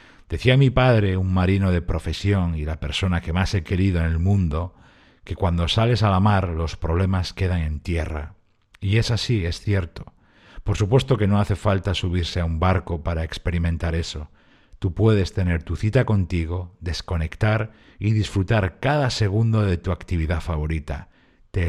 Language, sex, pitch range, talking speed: Spanish, male, 85-110 Hz, 170 wpm